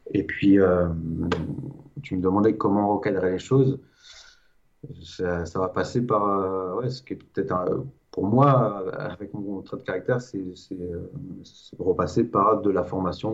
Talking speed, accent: 170 wpm, French